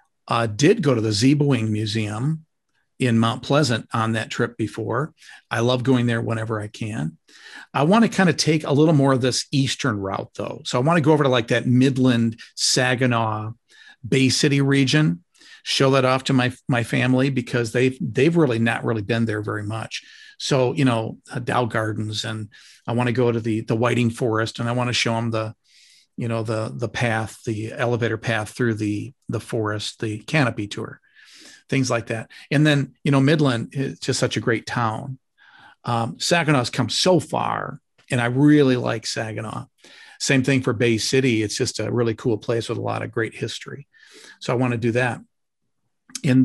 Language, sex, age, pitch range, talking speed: English, male, 50-69, 115-135 Hz, 200 wpm